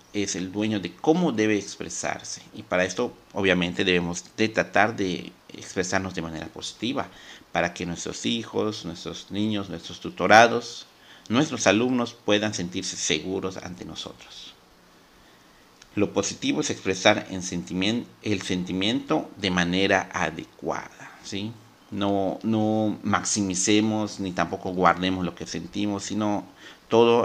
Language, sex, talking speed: Spanish, male, 120 wpm